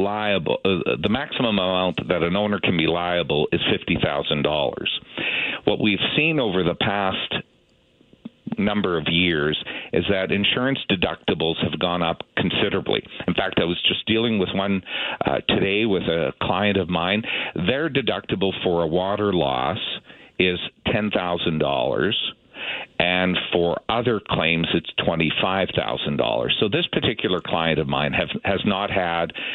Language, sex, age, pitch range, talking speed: English, male, 50-69, 80-100 Hz, 140 wpm